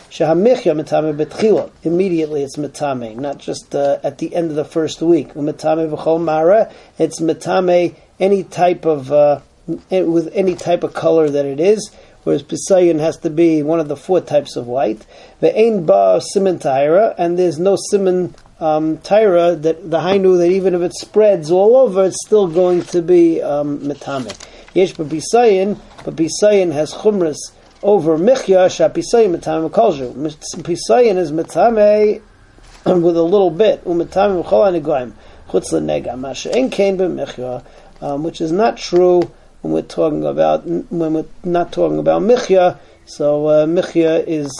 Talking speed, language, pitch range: 135 wpm, English, 145-185 Hz